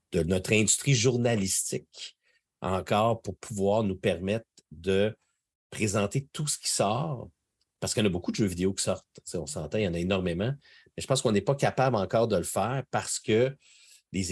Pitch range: 95-115 Hz